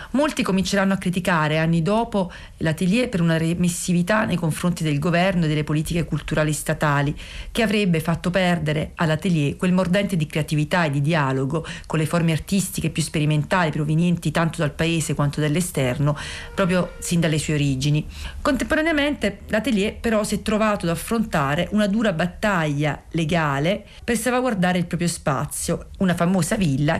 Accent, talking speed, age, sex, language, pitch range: native, 150 wpm, 40-59, female, Italian, 155-195 Hz